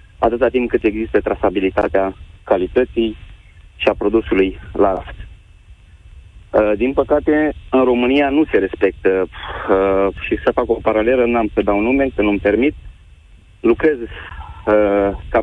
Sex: male